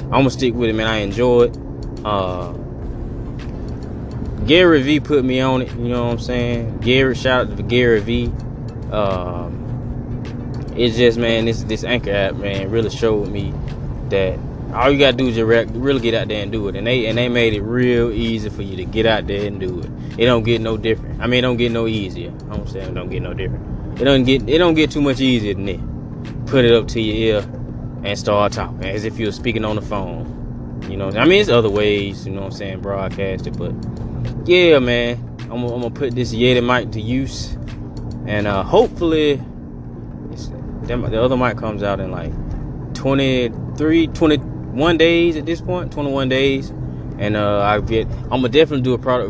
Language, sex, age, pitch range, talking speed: English, male, 20-39, 105-125 Hz, 210 wpm